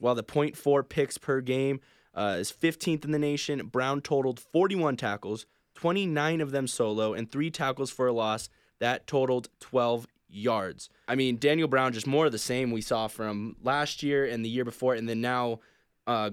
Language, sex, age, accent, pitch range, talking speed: English, male, 20-39, American, 115-140 Hz, 200 wpm